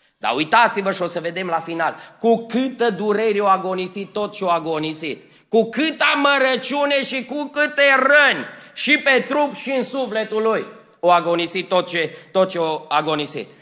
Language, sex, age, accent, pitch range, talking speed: Romanian, male, 30-49, native, 180-265 Hz, 170 wpm